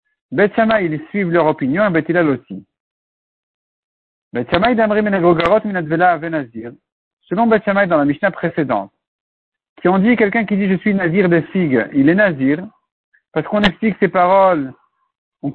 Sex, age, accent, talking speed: male, 60-79, French, 135 wpm